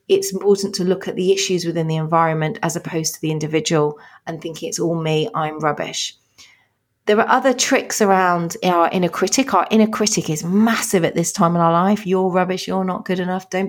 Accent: British